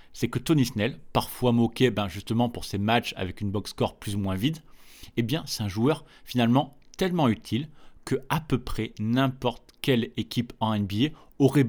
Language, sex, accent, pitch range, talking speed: French, male, French, 105-130 Hz, 185 wpm